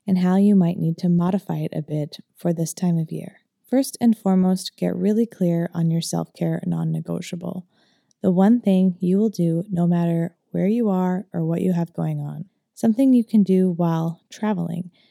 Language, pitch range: English, 170-210 Hz